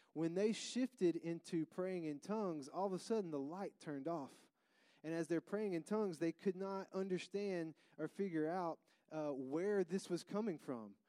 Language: English